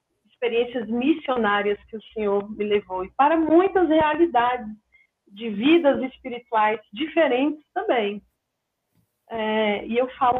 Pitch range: 205-270 Hz